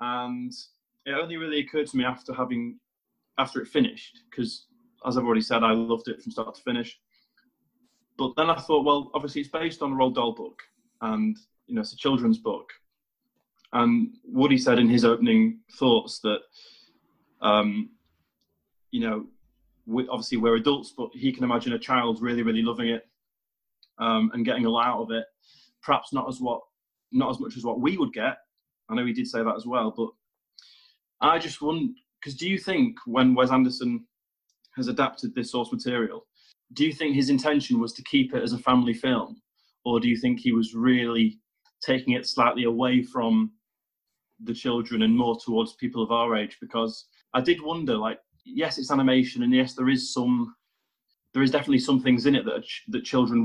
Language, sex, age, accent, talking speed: English, male, 20-39, British, 190 wpm